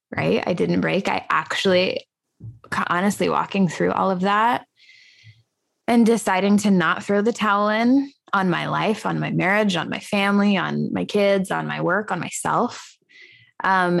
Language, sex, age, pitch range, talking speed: English, female, 20-39, 160-205 Hz, 165 wpm